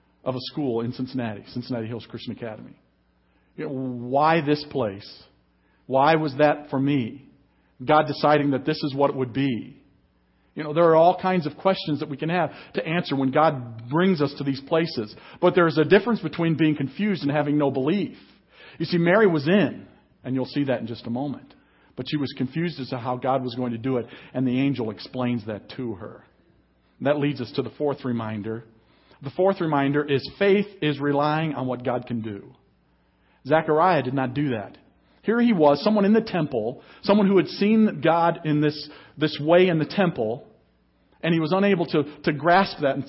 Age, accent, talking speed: 50-69, American, 200 wpm